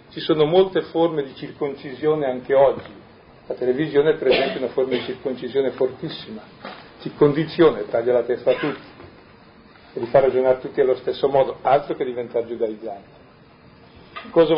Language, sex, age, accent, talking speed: Italian, male, 50-69, native, 150 wpm